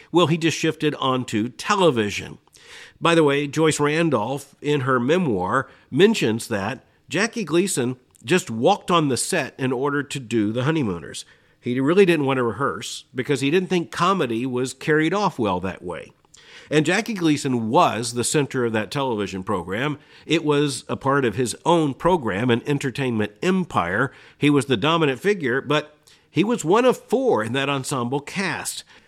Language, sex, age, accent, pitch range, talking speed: English, male, 50-69, American, 130-175 Hz, 170 wpm